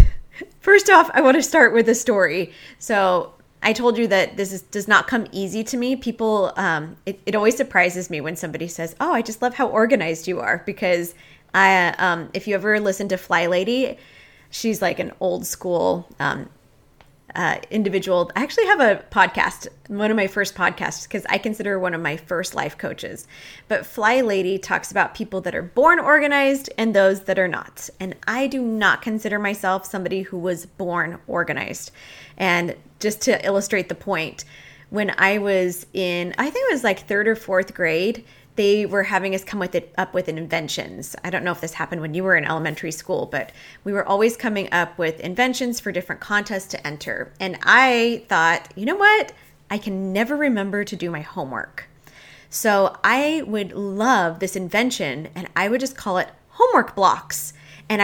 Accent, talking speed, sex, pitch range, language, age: American, 190 wpm, female, 175-225 Hz, English, 20-39